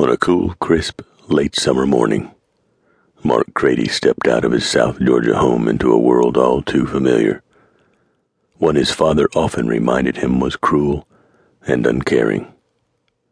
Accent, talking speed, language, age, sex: American, 145 wpm, English, 60-79, male